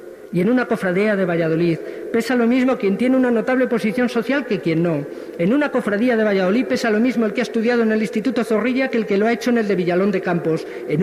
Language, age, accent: Spanish, 50-69, Spanish